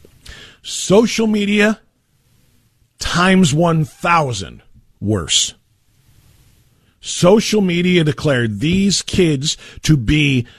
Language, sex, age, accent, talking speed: English, male, 40-59, American, 70 wpm